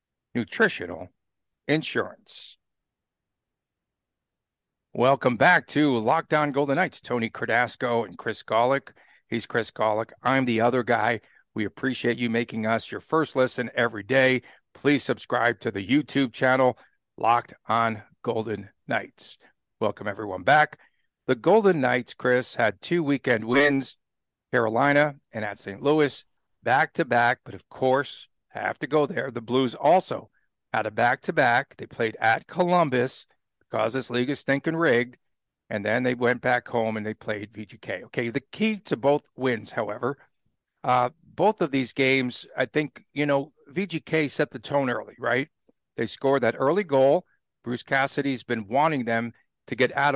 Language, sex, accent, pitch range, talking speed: English, male, American, 120-145 Hz, 150 wpm